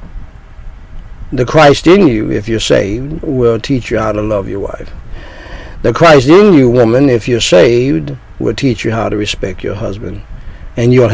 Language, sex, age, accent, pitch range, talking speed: English, male, 60-79, American, 105-145 Hz, 180 wpm